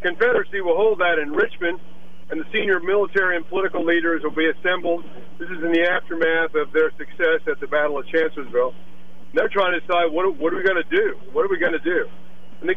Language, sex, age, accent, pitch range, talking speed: English, male, 50-69, American, 155-180 Hz, 235 wpm